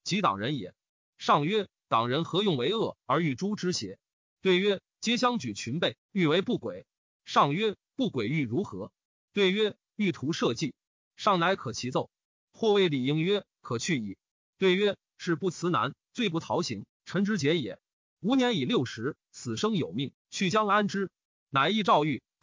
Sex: male